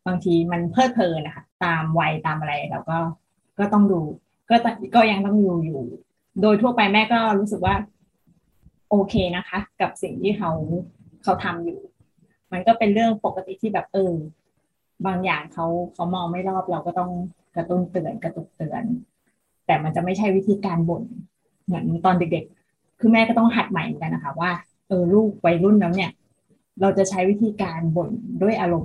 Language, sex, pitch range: Thai, female, 170-210 Hz